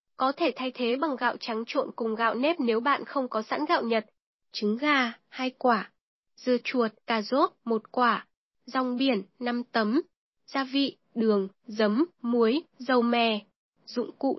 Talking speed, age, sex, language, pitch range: 170 wpm, 10-29, female, Vietnamese, 225-280 Hz